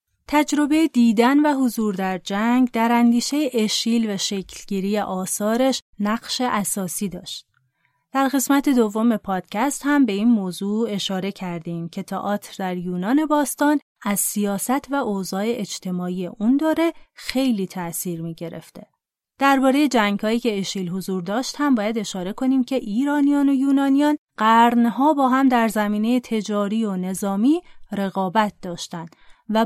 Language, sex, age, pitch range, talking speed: Persian, female, 30-49, 190-245 Hz, 135 wpm